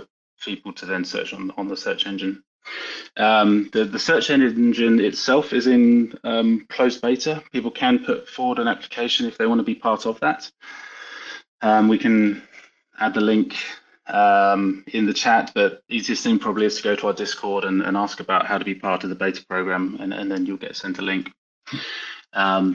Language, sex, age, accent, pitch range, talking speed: English, male, 20-39, British, 95-130 Hz, 195 wpm